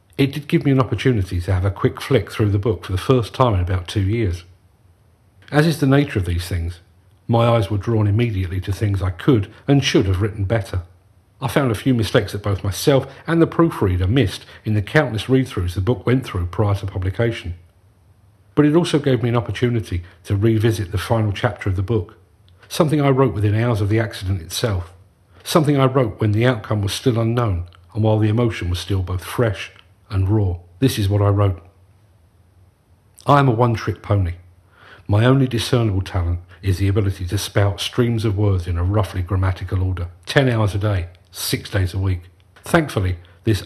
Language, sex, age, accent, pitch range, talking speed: English, male, 50-69, British, 95-115 Hz, 200 wpm